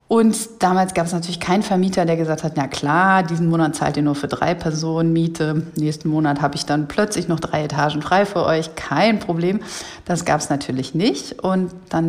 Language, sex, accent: German, female, German